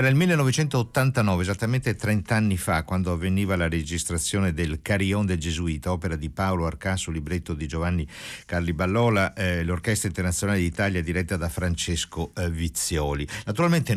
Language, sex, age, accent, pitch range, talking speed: Italian, male, 60-79, native, 85-110 Hz, 150 wpm